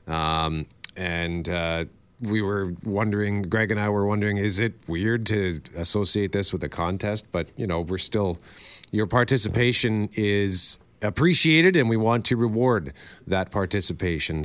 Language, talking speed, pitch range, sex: English, 150 wpm, 90-110 Hz, male